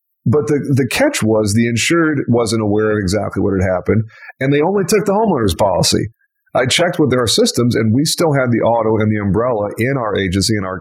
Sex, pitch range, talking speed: male, 110-150 Hz, 220 wpm